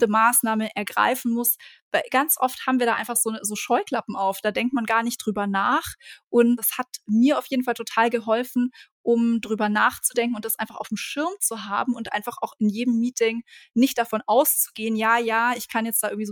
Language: German